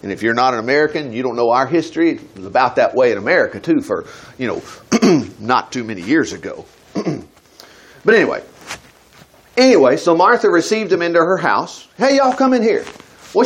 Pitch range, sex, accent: 170-265 Hz, male, American